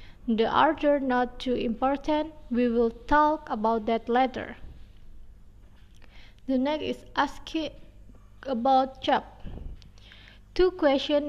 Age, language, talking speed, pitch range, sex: 20-39, Indonesian, 100 wpm, 225-290 Hz, female